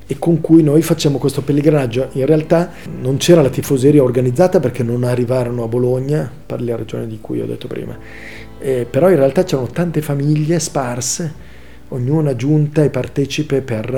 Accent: native